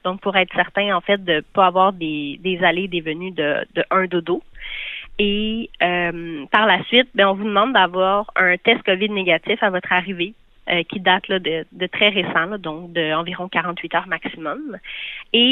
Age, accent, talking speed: 30-49, Canadian, 205 wpm